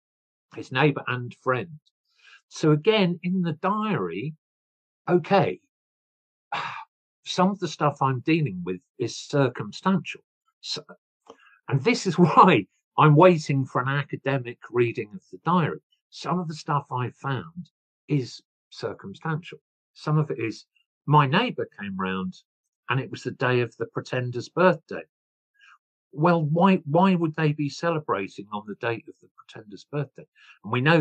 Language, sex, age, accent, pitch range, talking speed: English, male, 50-69, British, 125-180 Hz, 145 wpm